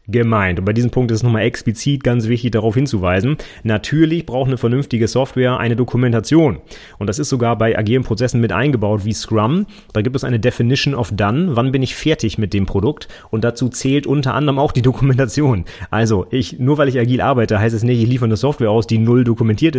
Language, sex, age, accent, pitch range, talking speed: German, male, 30-49, German, 110-135 Hz, 215 wpm